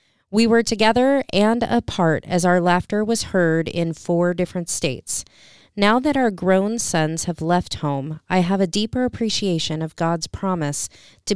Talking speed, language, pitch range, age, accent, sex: 165 wpm, English, 155-190 Hz, 30-49, American, female